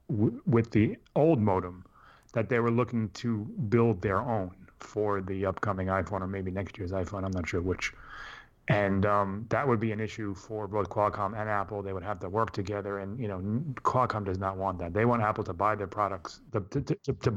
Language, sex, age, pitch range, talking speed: English, male, 30-49, 95-115 Hz, 215 wpm